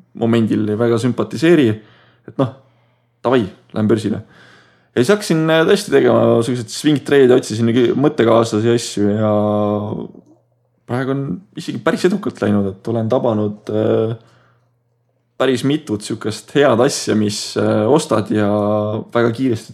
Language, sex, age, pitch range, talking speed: English, male, 20-39, 105-120 Hz, 115 wpm